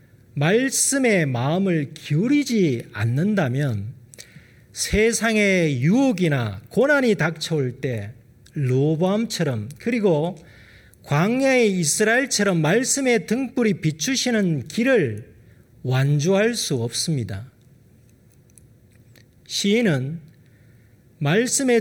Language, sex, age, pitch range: Korean, male, 40-59, 120-195 Hz